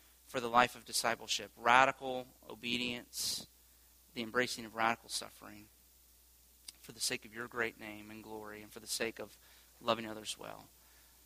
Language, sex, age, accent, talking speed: English, male, 30-49, American, 155 wpm